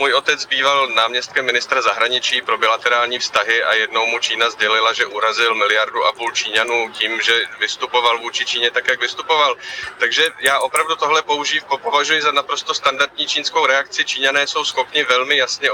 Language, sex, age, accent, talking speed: Czech, male, 30-49, native, 170 wpm